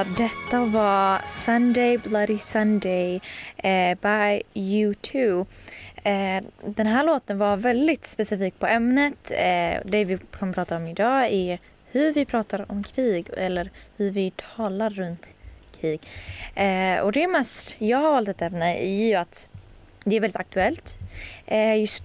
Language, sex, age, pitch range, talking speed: Swedish, female, 20-39, 180-230 Hz, 130 wpm